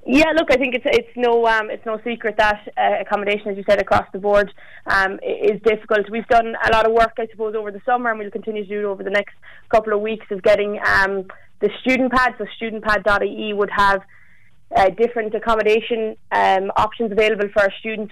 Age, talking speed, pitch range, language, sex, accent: 20-39, 215 wpm, 200-225 Hz, English, female, Irish